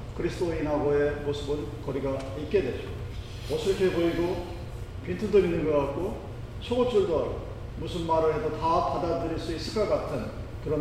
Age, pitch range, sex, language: 40-59, 115-170 Hz, male, Korean